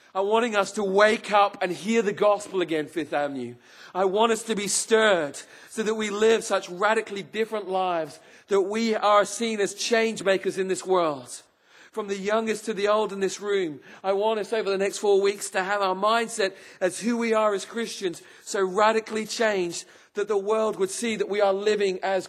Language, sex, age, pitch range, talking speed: English, male, 40-59, 190-220 Hz, 205 wpm